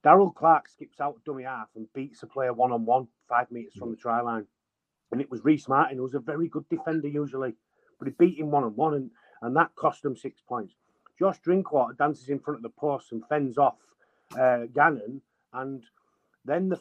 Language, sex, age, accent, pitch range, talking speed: English, male, 40-59, British, 125-155 Hz, 220 wpm